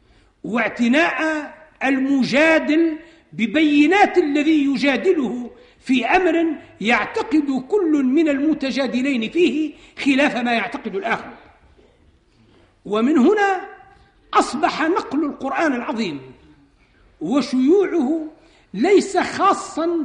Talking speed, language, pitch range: 75 wpm, Arabic, 250-325 Hz